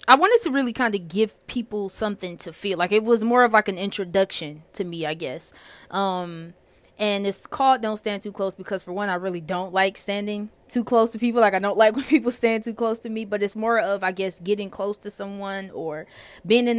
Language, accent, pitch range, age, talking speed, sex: English, American, 180-220 Hz, 20-39, 240 wpm, female